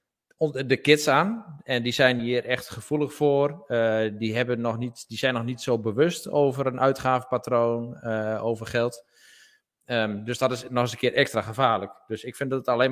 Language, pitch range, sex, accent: Dutch, 110-130 Hz, male, Dutch